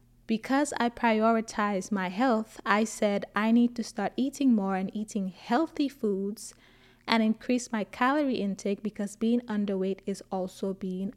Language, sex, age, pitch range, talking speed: English, female, 20-39, 195-240 Hz, 150 wpm